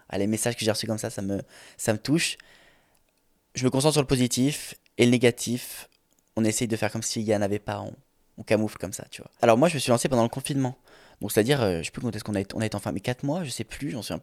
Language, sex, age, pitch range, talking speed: French, male, 20-39, 110-135 Hz, 305 wpm